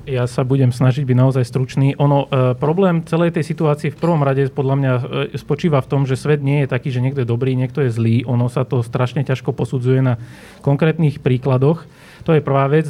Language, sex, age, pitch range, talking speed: Slovak, male, 30-49, 135-155 Hz, 220 wpm